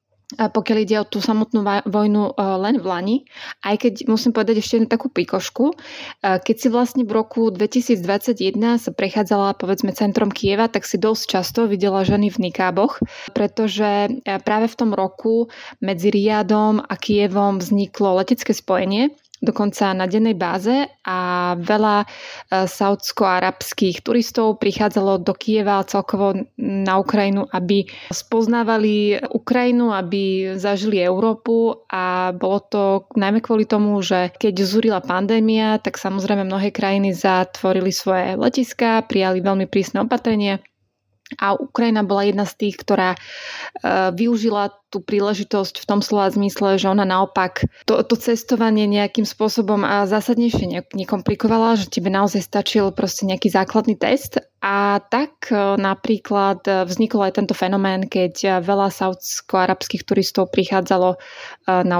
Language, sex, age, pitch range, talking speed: English, female, 20-39, 195-225 Hz, 130 wpm